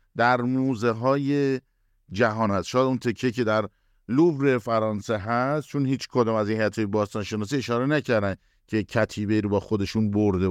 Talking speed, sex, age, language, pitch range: 165 wpm, male, 50-69, Persian, 100-130 Hz